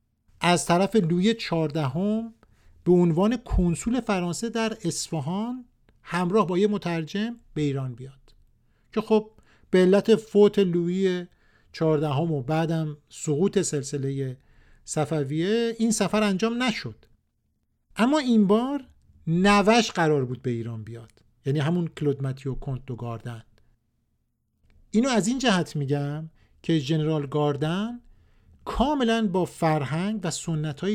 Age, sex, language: 50-69, male, Persian